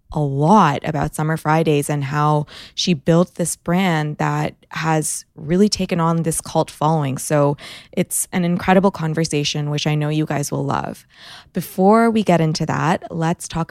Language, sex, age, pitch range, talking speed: English, female, 20-39, 155-185 Hz, 165 wpm